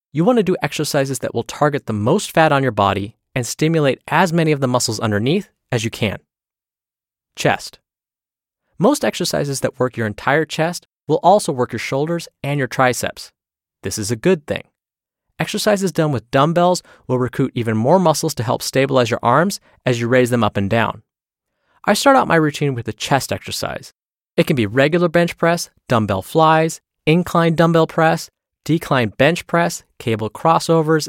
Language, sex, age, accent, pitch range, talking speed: English, male, 20-39, American, 120-165 Hz, 175 wpm